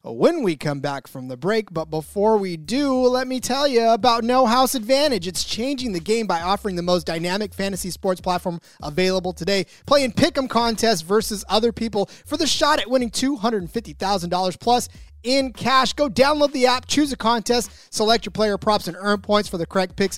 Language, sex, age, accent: English, male, 30-49, American